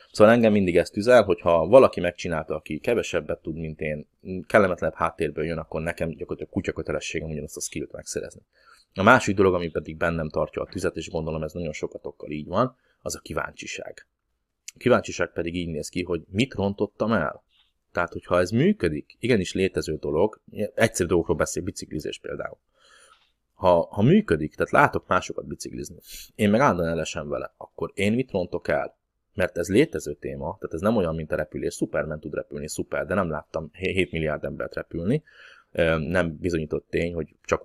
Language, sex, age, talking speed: Hungarian, male, 30-49, 175 wpm